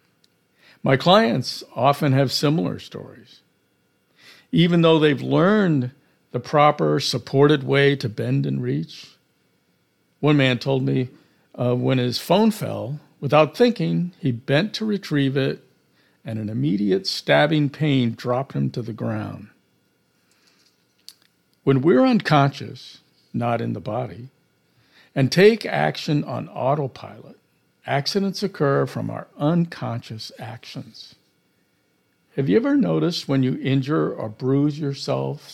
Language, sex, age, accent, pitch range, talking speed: English, male, 60-79, American, 125-160 Hz, 120 wpm